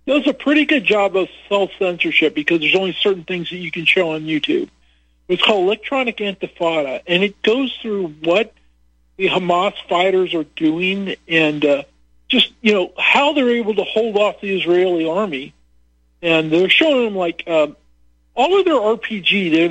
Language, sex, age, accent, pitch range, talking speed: English, male, 50-69, American, 150-205 Hz, 175 wpm